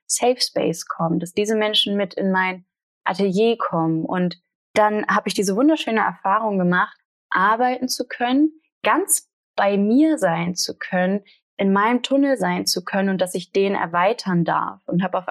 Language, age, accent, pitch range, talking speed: German, 20-39, German, 180-215 Hz, 170 wpm